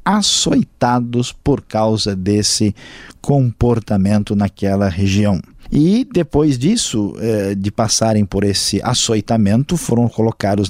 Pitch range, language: 105-140 Hz, Portuguese